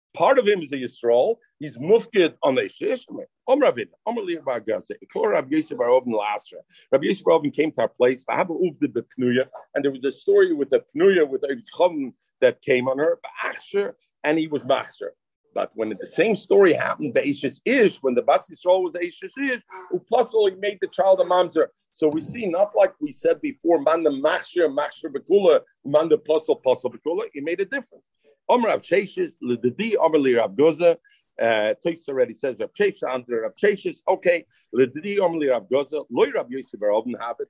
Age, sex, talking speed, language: 50-69, male, 145 wpm, English